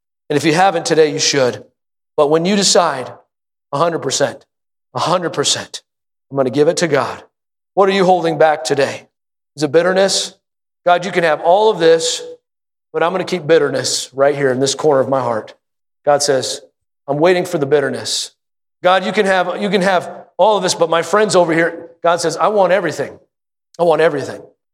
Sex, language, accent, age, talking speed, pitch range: male, English, American, 40-59, 195 wpm, 150-185 Hz